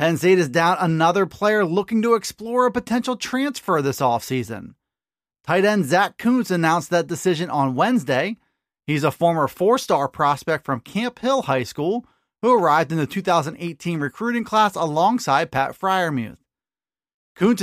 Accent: American